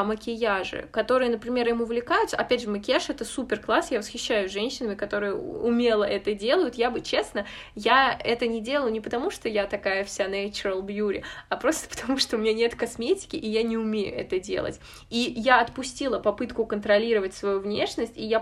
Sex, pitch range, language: female, 205-240 Hz, Russian